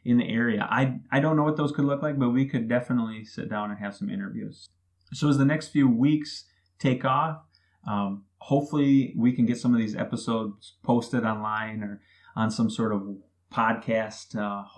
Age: 20-39